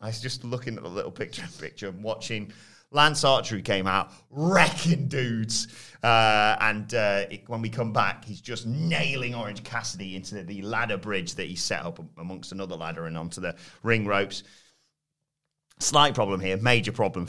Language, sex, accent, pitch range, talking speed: English, male, British, 105-145 Hz, 185 wpm